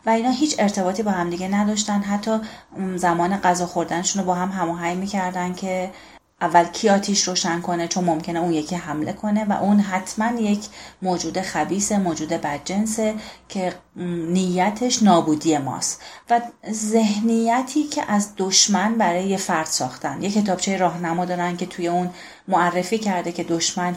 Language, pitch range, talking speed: Persian, 175-215 Hz, 145 wpm